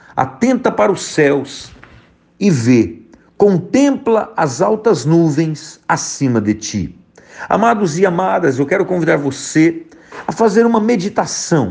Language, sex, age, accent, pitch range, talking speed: Portuguese, male, 50-69, Brazilian, 155-220 Hz, 125 wpm